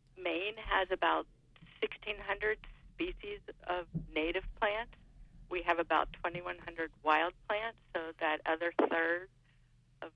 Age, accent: 50-69, American